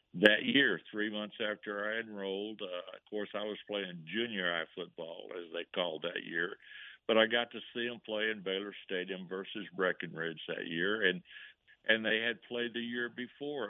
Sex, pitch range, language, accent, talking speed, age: male, 95-120 Hz, English, American, 190 wpm, 60-79